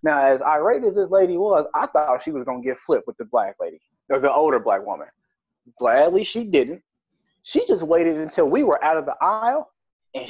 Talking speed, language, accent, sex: 215 wpm, English, American, male